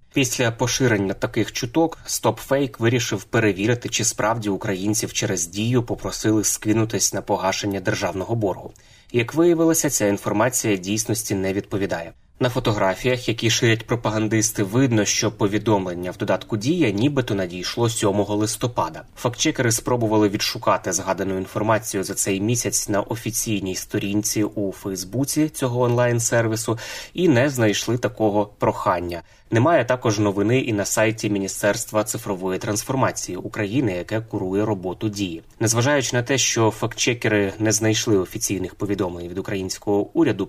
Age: 20-39